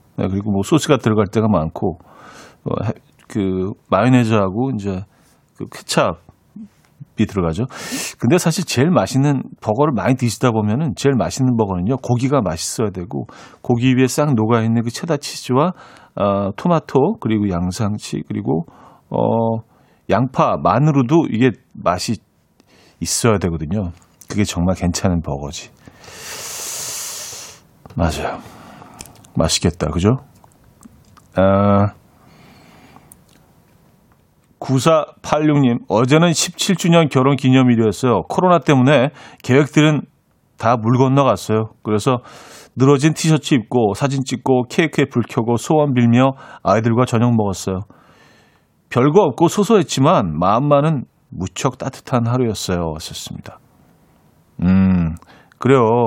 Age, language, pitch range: 40-59, Korean, 105-140 Hz